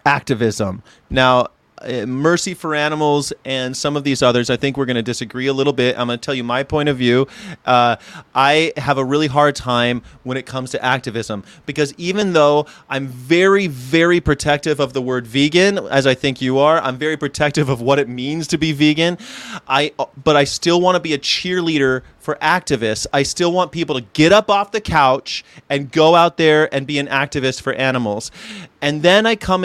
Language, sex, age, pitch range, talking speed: English, male, 30-49, 130-160 Hz, 205 wpm